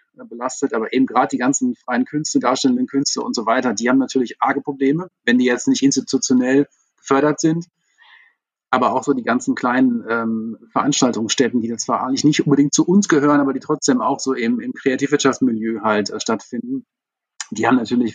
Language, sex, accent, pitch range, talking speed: German, male, German, 125-170 Hz, 180 wpm